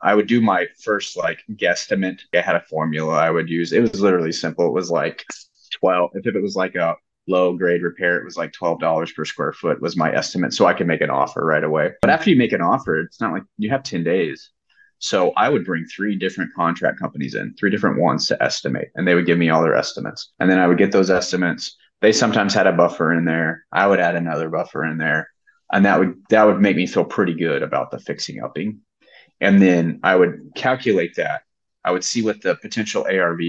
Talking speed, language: 235 wpm, English